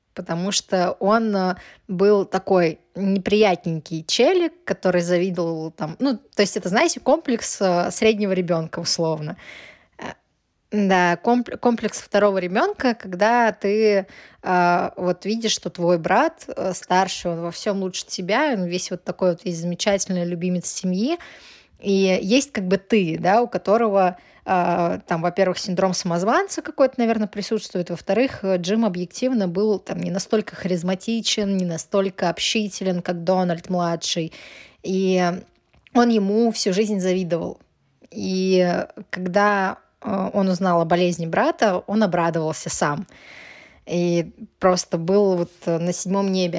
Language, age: Russian, 20-39